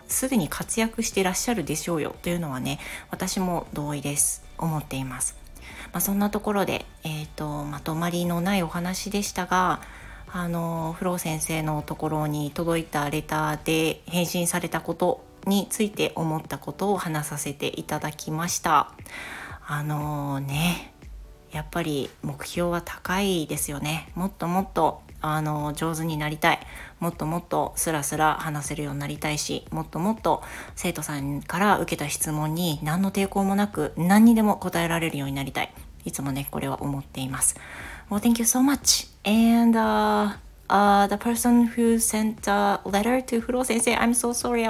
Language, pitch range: Japanese, 150-200 Hz